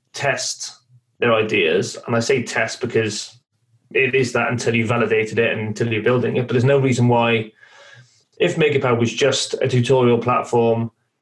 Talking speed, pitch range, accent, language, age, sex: 170 wpm, 115-130 Hz, British, English, 20-39, male